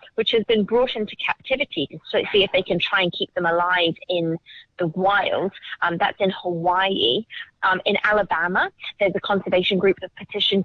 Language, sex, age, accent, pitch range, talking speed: English, female, 30-49, British, 185-250 Hz, 185 wpm